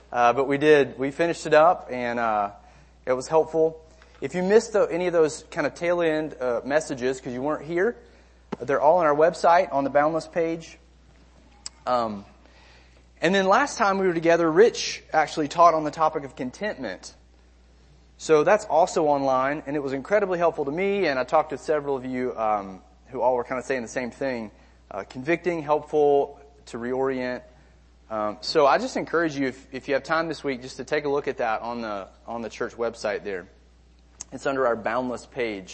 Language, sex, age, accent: English, male, 30-49, American